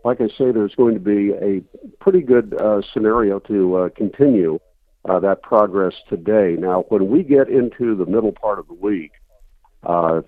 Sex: male